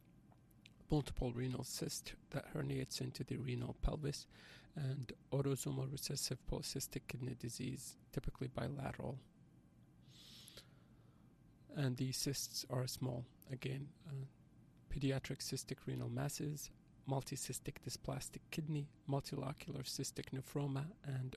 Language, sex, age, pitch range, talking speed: English, male, 40-59, 130-145 Hz, 100 wpm